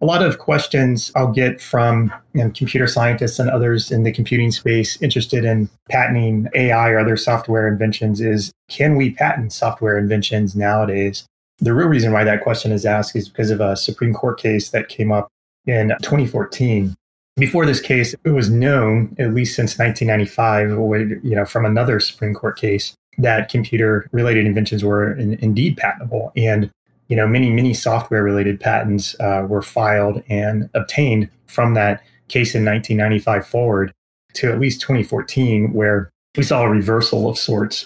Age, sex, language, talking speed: 20-39, male, English, 165 wpm